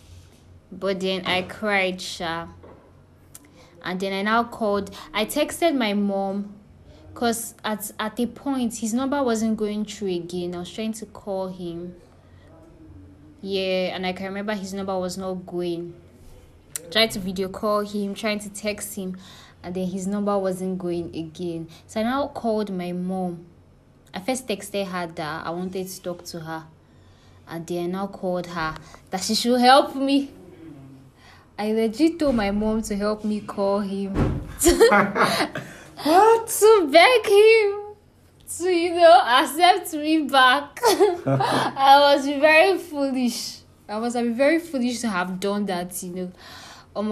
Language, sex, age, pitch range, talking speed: English, female, 20-39, 180-240 Hz, 155 wpm